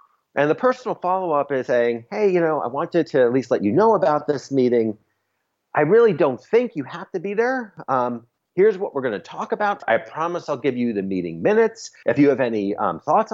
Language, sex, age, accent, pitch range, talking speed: English, male, 40-59, American, 115-185 Hz, 235 wpm